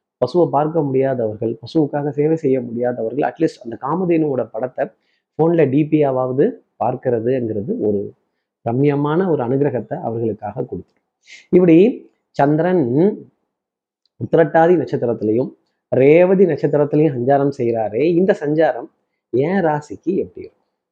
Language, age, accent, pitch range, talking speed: Tamil, 30-49, native, 130-165 Hz, 95 wpm